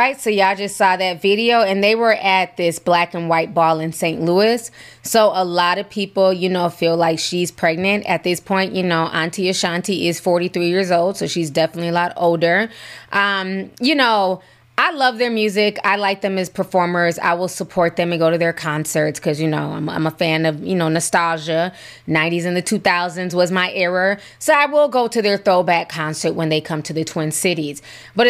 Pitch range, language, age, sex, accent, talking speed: 170-205 Hz, English, 20-39, female, American, 215 wpm